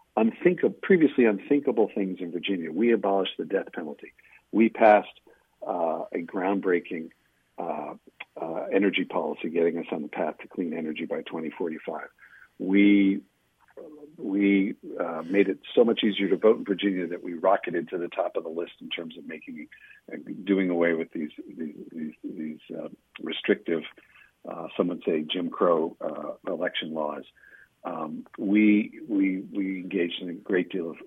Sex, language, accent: male, English, American